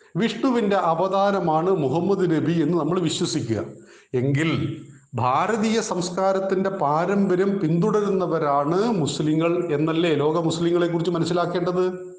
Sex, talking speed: male, 90 wpm